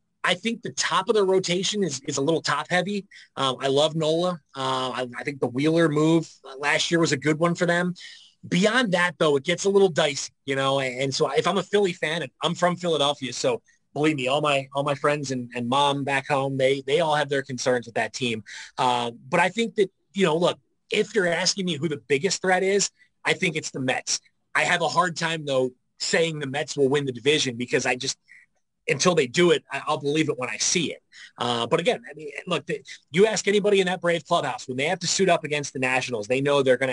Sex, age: male, 30-49